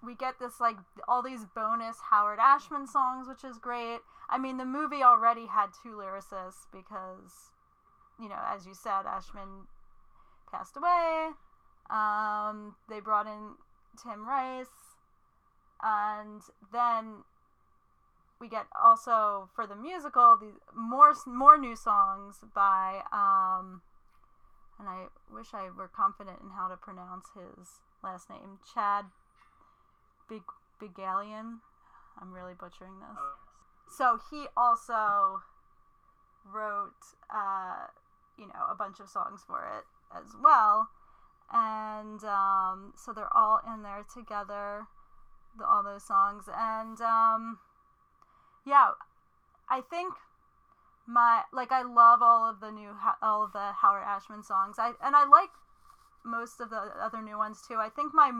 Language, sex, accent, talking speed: English, female, American, 135 wpm